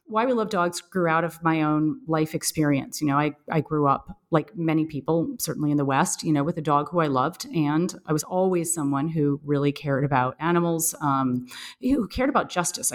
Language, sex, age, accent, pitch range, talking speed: English, female, 30-49, American, 150-190 Hz, 220 wpm